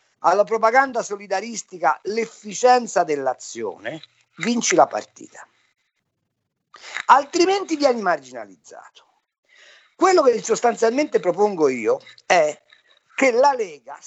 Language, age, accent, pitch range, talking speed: Italian, 50-69, native, 195-265 Hz, 85 wpm